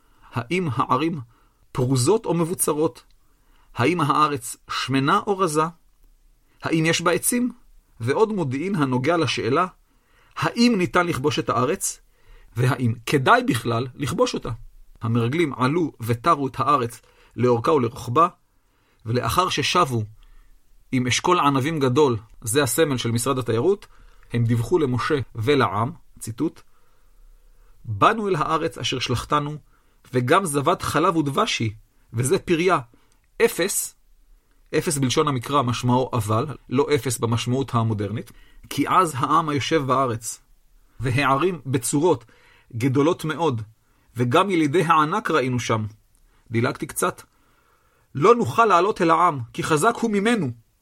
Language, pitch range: Hebrew, 120-160 Hz